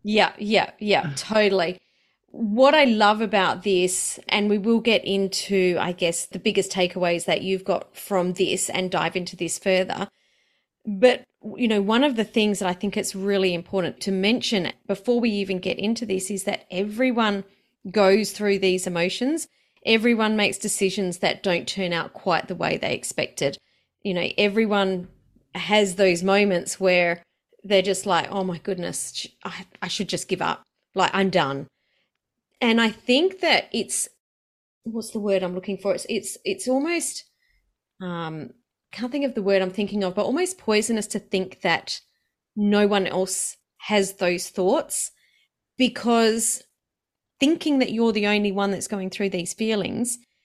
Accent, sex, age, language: Australian, female, 30-49, English